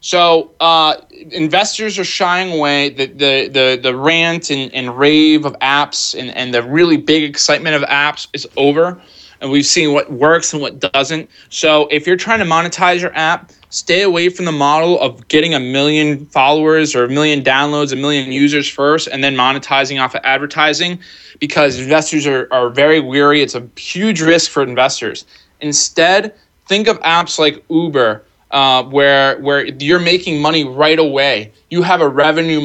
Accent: American